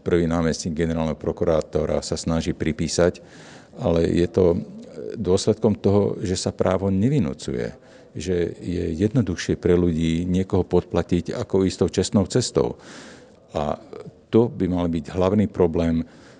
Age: 50-69